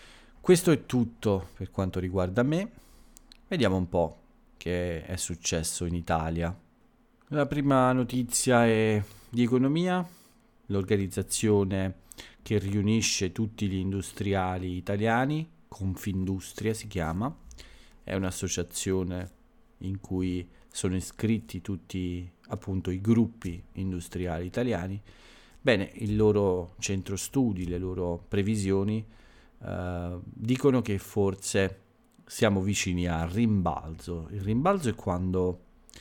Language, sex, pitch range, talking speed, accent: Italian, male, 90-110 Hz, 105 wpm, native